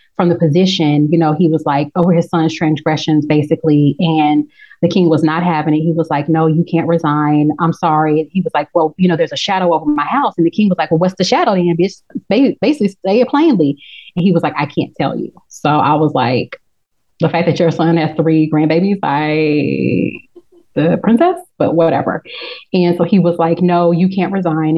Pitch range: 155-180 Hz